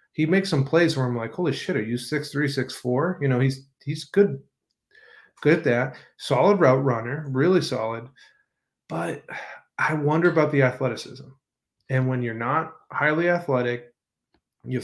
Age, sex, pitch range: 40-59, male, 125-145 Hz